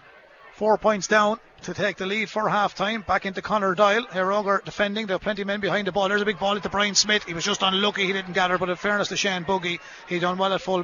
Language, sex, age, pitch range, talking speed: English, male, 30-49, 180-200 Hz, 275 wpm